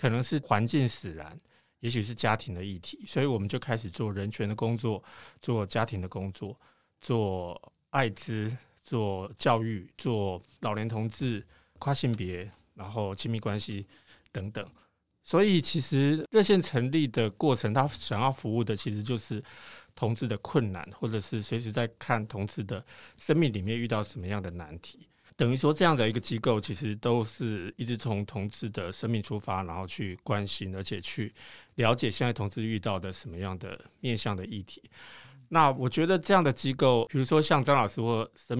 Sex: male